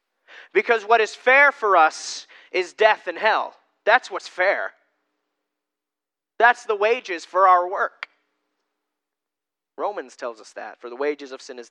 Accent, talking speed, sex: American, 150 wpm, male